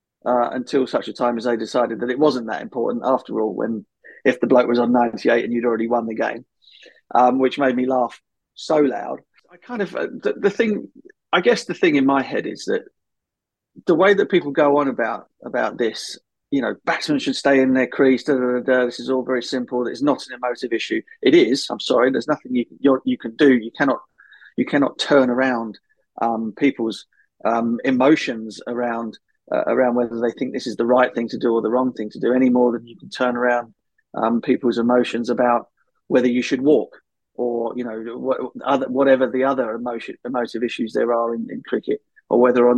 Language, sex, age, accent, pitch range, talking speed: English, male, 30-49, British, 120-140 Hz, 220 wpm